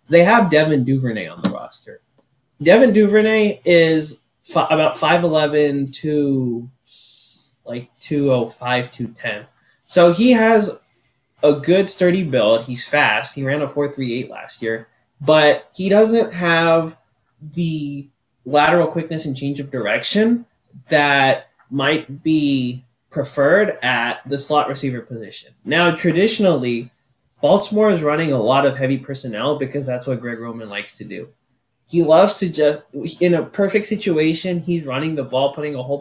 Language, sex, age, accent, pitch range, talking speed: English, male, 20-39, American, 130-170 Hz, 140 wpm